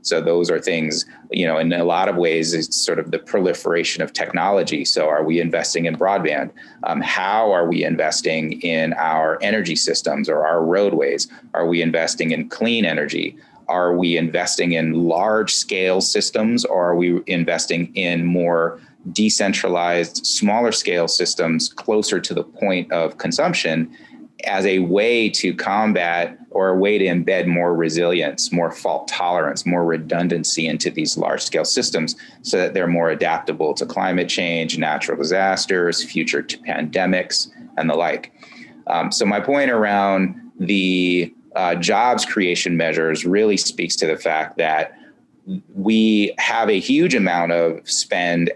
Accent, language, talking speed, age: American, English, 155 wpm, 30-49